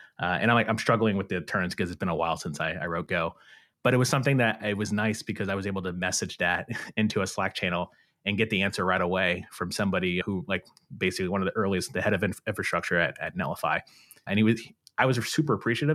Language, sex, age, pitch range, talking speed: English, male, 30-49, 100-120 Hz, 260 wpm